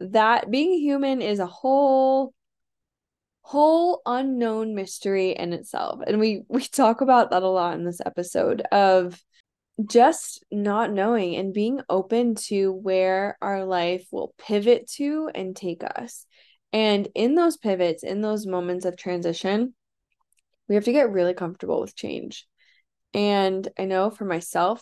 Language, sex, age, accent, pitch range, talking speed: English, female, 10-29, American, 185-235 Hz, 145 wpm